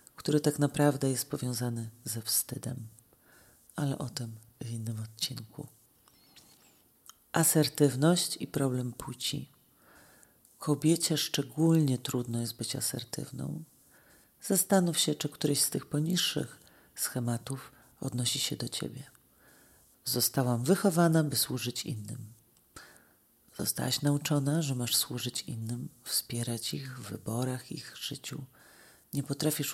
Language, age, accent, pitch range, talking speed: Polish, 40-59, native, 120-150 Hz, 110 wpm